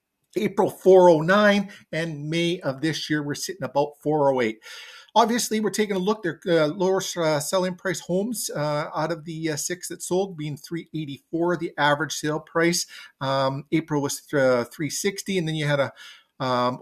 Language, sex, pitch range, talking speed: English, male, 130-170 Hz, 200 wpm